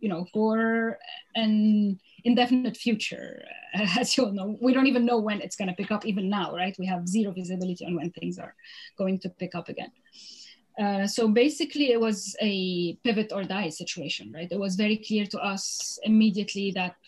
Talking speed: 190 wpm